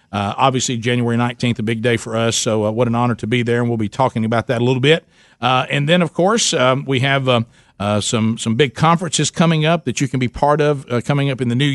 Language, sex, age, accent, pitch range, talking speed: English, male, 50-69, American, 120-150 Hz, 275 wpm